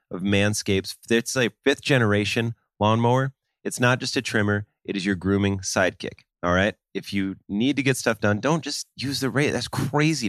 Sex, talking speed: male, 190 wpm